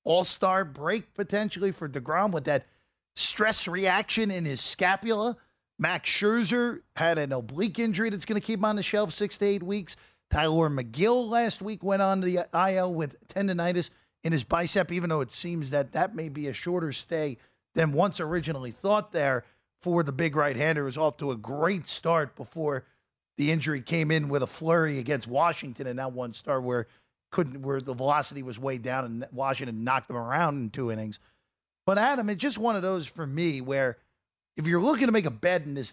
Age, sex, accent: 40-59, male, American